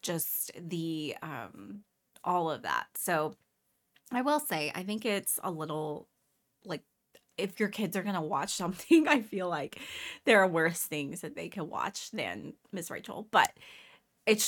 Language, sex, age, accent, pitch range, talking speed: English, female, 20-39, American, 165-220 Hz, 160 wpm